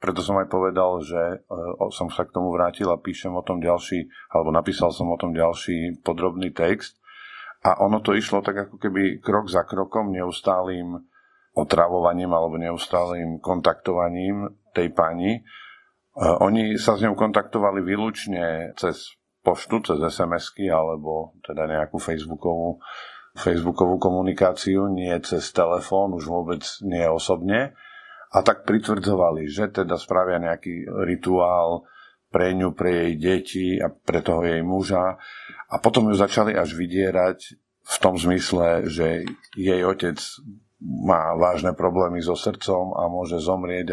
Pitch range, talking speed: 85-95 Hz, 140 wpm